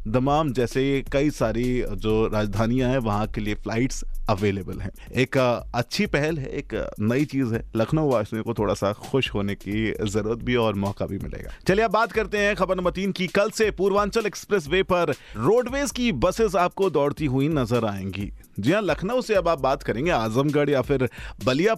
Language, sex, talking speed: Hindi, male, 185 wpm